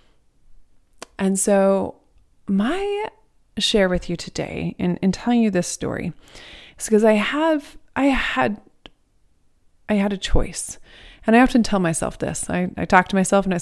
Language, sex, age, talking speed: English, female, 30-49, 160 wpm